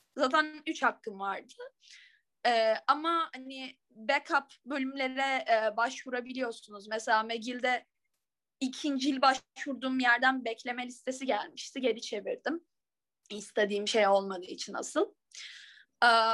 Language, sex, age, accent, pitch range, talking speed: Turkish, female, 10-29, native, 235-310 Hz, 105 wpm